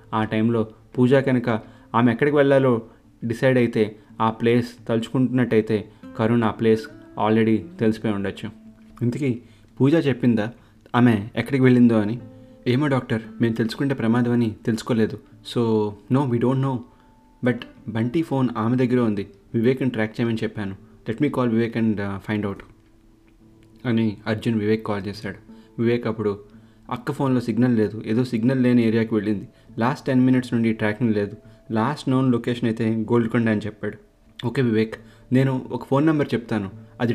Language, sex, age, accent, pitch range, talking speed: Telugu, male, 30-49, native, 110-120 Hz, 145 wpm